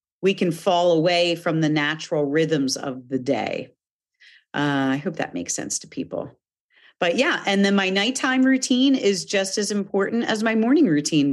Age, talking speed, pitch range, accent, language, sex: 40-59, 180 wpm, 155-200 Hz, American, English, female